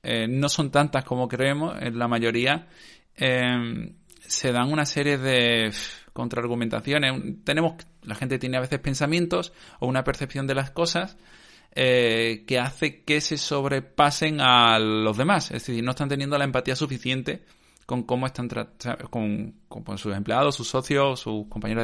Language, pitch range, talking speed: Spanish, 115-140 Hz, 170 wpm